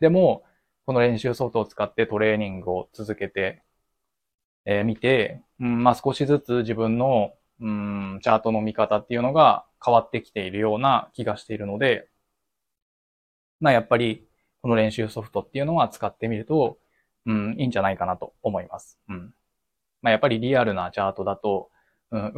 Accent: native